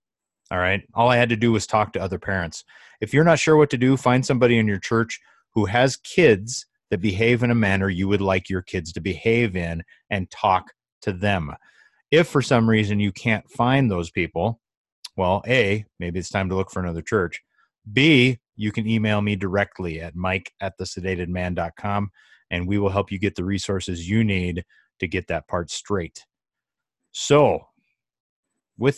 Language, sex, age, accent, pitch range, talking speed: English, male, 30-49, American, 95-115 Hz, 190 wpm